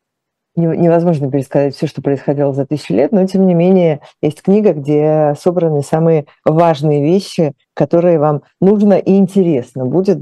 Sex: female